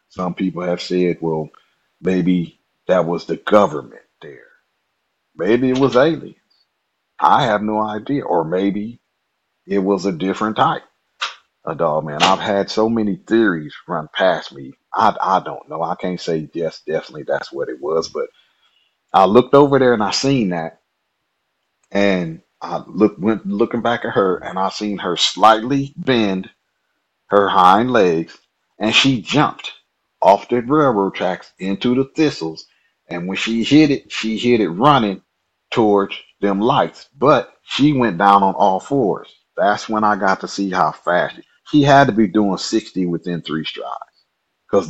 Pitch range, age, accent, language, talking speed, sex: 95-125 Hz, 40-59, American, English, 165 wpm, male